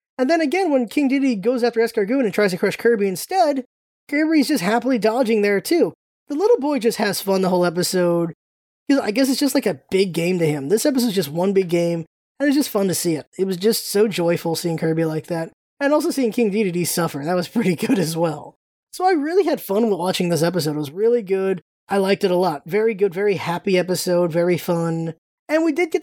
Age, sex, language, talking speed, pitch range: 20-39, male, English, 240 wpm, 175-240 Hz